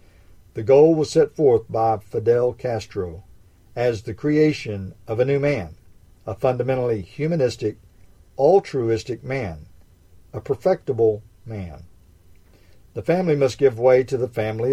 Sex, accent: male, American